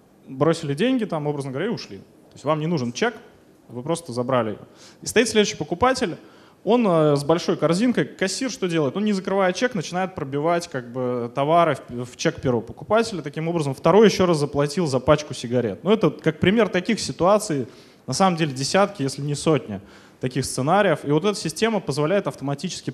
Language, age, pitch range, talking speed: Russian, 20-39, 130-180 Hz, 190 wpm